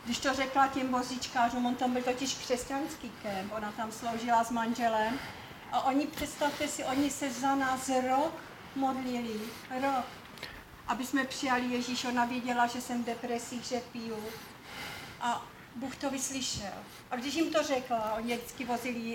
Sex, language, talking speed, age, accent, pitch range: female, Czech, 160 wpm, 40-59, native, 230-265 Hz